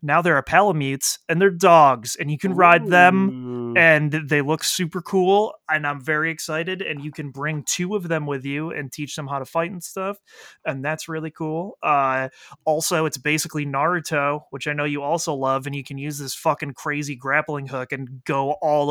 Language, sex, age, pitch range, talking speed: English, male, 30-49, 140-165 Hz, 205 wpm